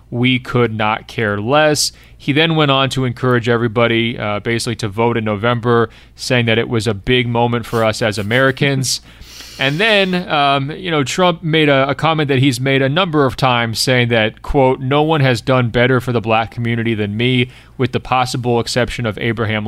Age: 30-49